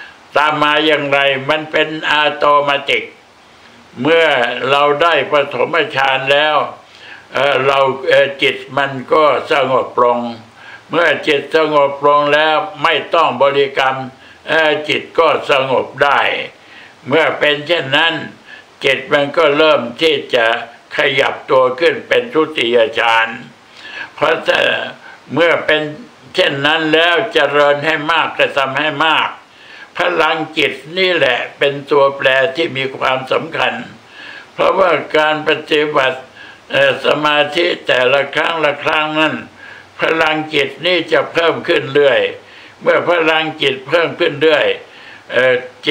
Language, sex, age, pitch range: Thai, male, 60-79, 140-165 Hz